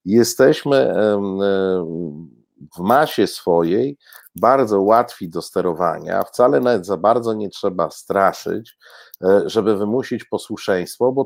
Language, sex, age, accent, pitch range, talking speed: Polish, male, 50-69, native, 95-130 Hz, 105 wpm